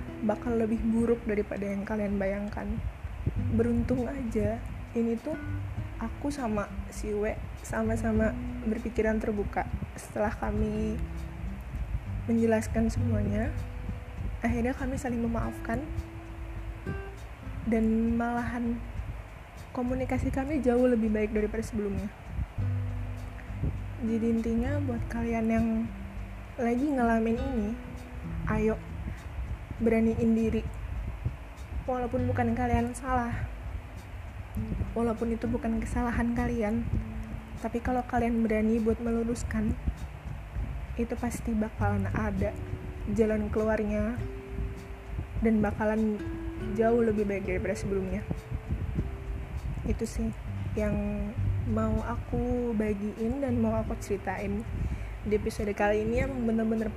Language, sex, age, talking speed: Indonesian, female, 20-39, 95 wpm